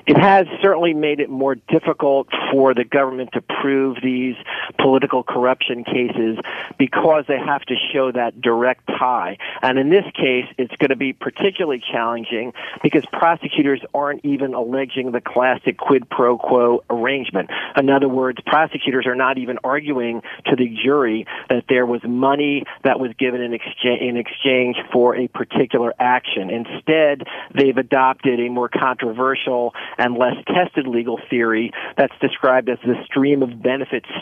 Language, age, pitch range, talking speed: English, 40-59, 120-140 Hz, 150 wpm